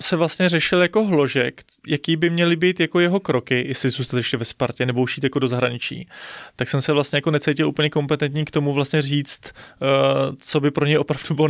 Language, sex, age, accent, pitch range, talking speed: Czech, male, 30-49, native, 140-165 Hz, 215 wpm